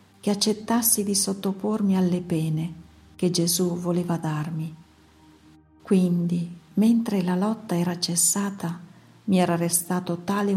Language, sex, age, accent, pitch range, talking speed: Italian, female, 50-69, native, 165-195 Hz, 115 wpm